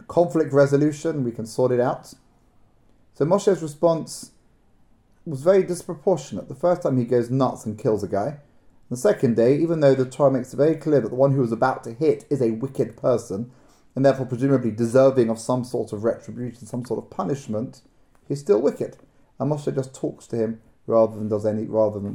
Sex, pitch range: male, 125-155 Hz